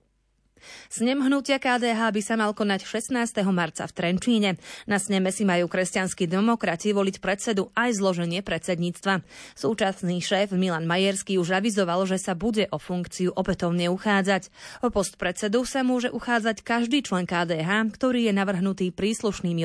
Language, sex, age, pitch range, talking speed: Slovak, female, 20-39, 185-230 Hz, 145 wpm